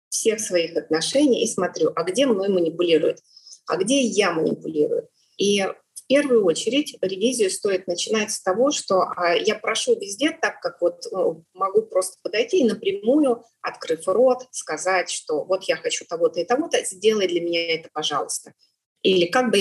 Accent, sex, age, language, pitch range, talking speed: native, female, 30-49, Ukrainian, 180-245 Hz, 160 wpm